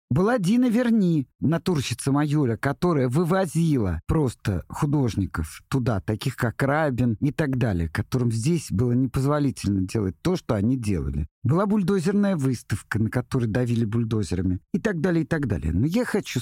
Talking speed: 150 wpm